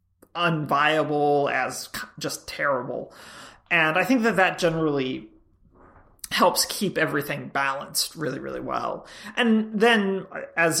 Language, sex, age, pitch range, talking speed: English, male, 30-49, 150-180 Hz, 110 wpm